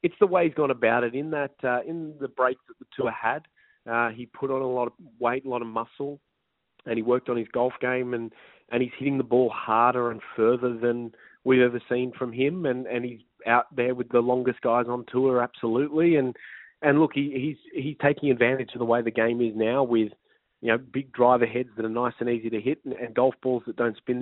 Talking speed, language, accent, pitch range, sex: 245 wpm, English, Australian, 110-135 Hz, male